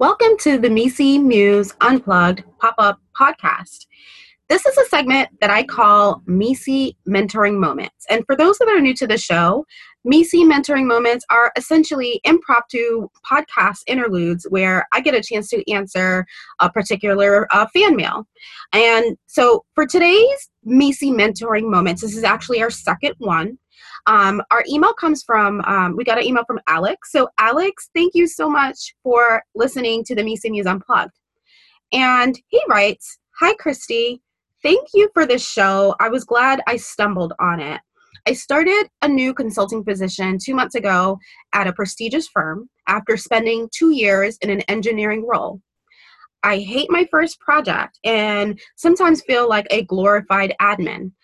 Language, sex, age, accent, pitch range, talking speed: English, female, 20-39, American, 200-280 Hz, 160 wpm